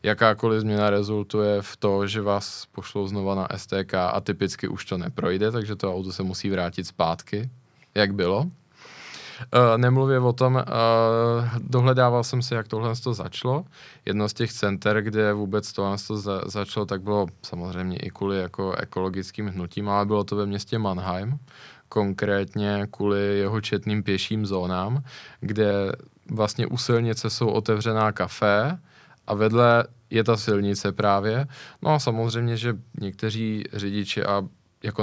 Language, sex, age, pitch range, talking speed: Czech, male, 20-39, 100-115 Hz, 155 wpm